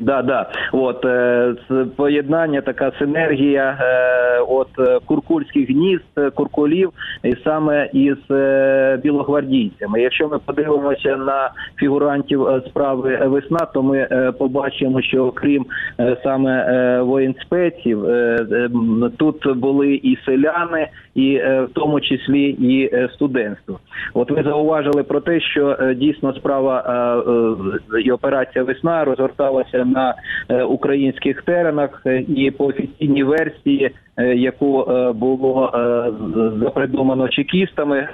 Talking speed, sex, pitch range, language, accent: 100 wpm, male, 130-145 Hz, Ukrainian, native